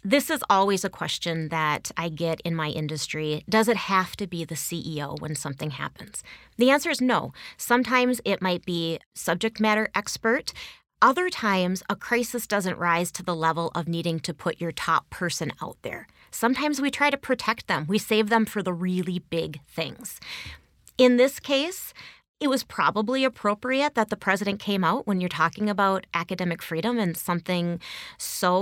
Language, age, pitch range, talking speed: English, 30-49, 170-225 Hz, 180 wpm